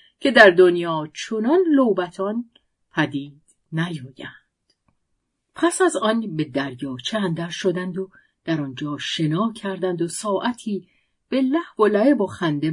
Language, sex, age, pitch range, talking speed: Persian, female, 50-69, 150-225 Hz, 125 wpm